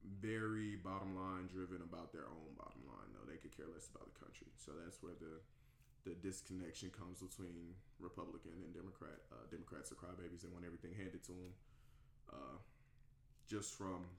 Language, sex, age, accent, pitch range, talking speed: English, male, 20-39, American, 90-105 Hz, 175 wpm